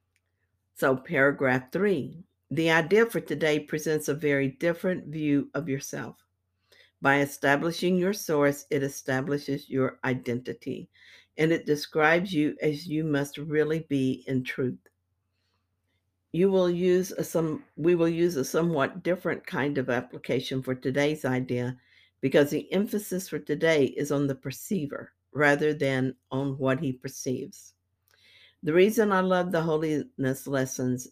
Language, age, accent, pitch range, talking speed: English, 60-79, American, 130-160 Hz, 135 wpm